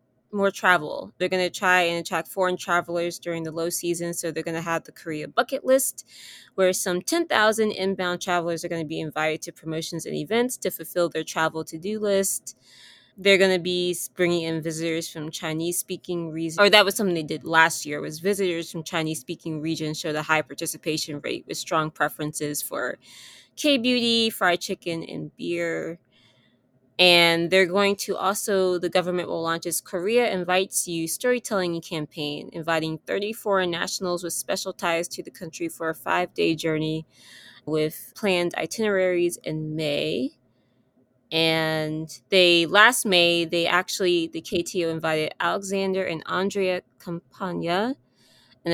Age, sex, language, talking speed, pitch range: 20-39, female, English, 160 wpm, 160-185 Hz